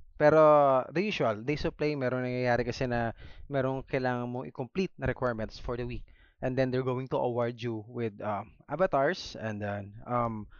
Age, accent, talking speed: 20-39, native, 180 wpm